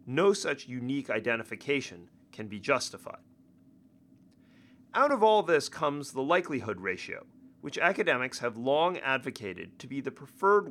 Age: 30-49